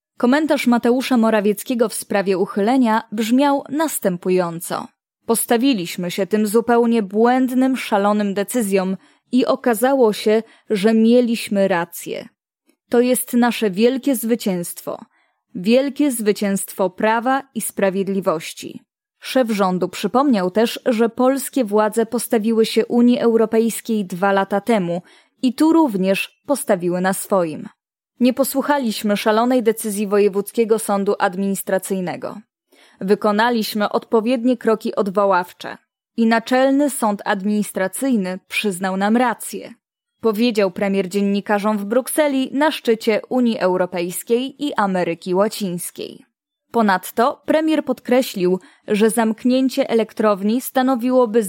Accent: native